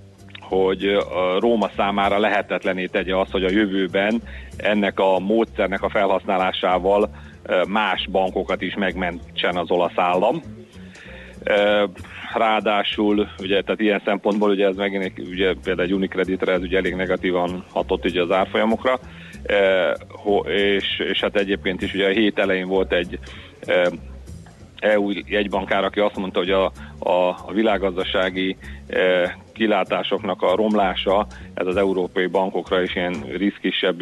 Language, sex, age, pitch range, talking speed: Hungarian, male, 40-59, 90-100 Hz, 130 wpm